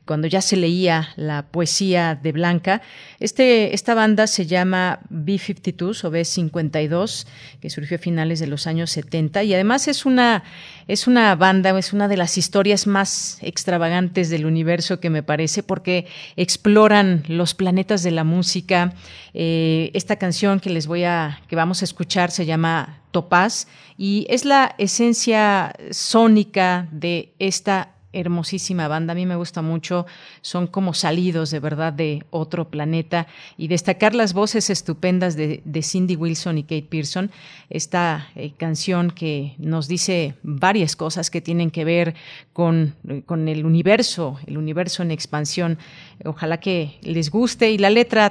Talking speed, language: 155 wpm, Italian